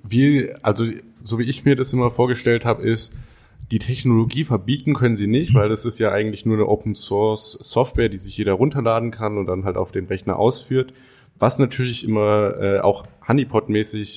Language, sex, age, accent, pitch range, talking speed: German, male, 20-39, German, 100-120 Hz, 180 wpm